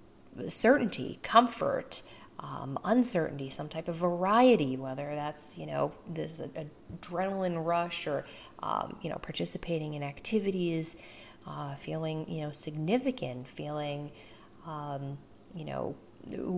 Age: 40-59